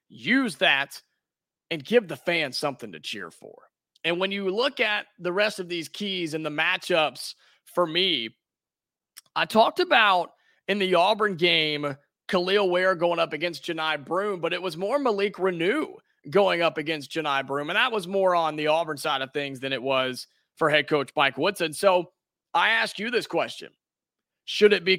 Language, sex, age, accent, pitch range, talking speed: English, male, 30-49, American, 170-230 Hz, 185 wpm